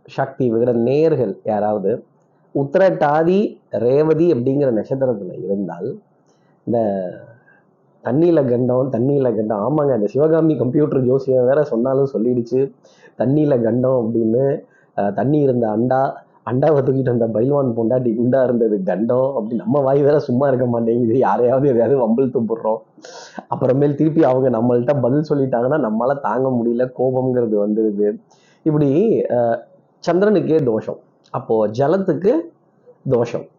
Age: 20-39